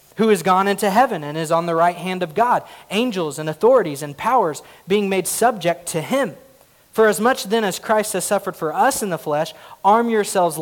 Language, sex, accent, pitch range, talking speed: English, male, American, 160-195 Hz, 215 wpm